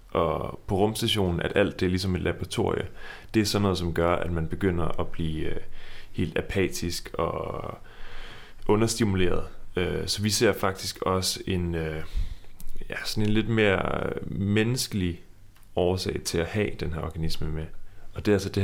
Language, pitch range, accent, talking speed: Danish, 85-100 Hz, native, 160 wpm